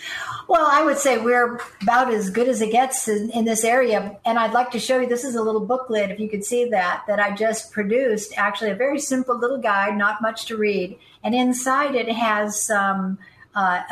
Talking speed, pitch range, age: 220 wpm, 190-235 Hz, 50-69